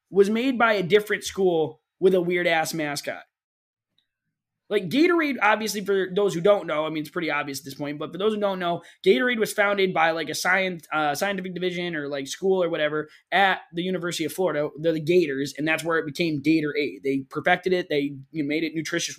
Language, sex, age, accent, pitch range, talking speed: English, male, 20-39, American, 160-270 Hz, 220 wpm